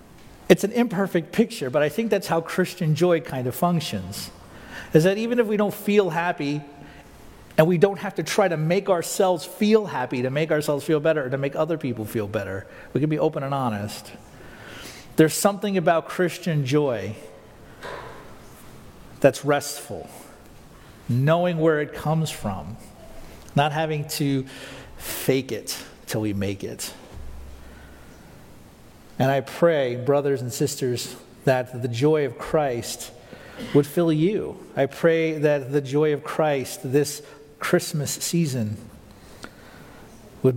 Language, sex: English, male